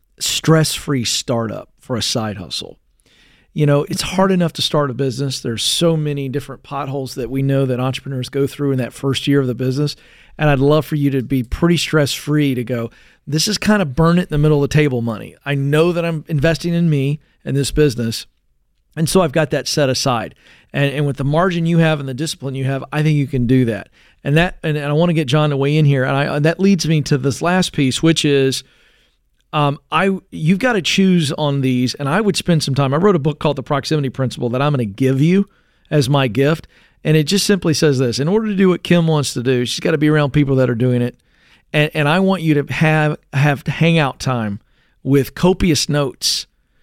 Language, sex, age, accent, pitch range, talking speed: English, male, 40-59, American, 130-160 Hz, 240 wpm